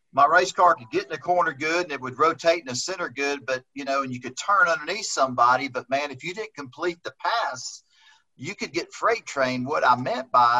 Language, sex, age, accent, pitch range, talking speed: English, male, 40-59, American, 130-175 Hz, 245 wpm